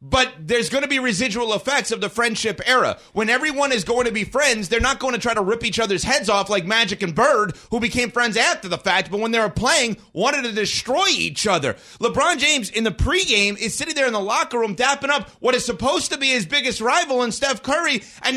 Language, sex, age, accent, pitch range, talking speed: English, male, 30-49, American, 200-270 Hz, 245 wpm